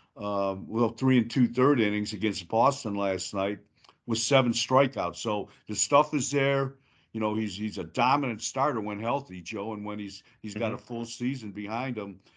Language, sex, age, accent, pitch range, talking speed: English, male, 50-69, American, 105-125 Hz, 195 wpm